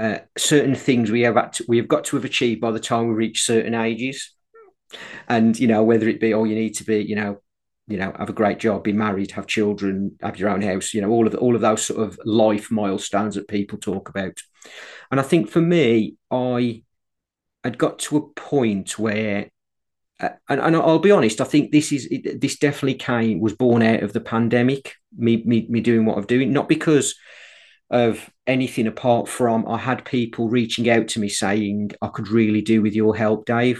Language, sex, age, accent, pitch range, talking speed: English, male, 40-59, British, 105-120 Hz, 220 wpm